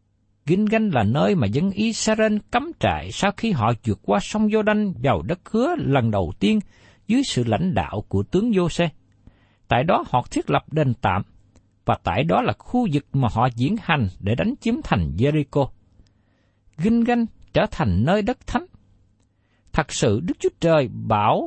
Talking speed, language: 180 wpm, Vietnamese